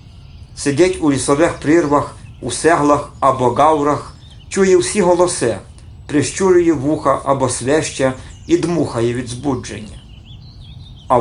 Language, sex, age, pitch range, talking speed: Ukrainian, male, 50-69, 110-155 Hz, 105 wpm